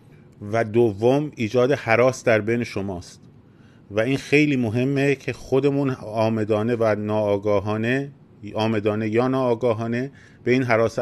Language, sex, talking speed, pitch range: Persian, male, 120 wpm, 110-130 Hz